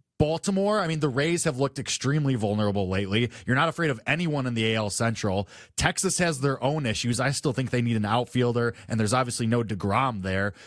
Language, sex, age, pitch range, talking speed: English, male, 20-39, 130-190 Hz, 210 wpm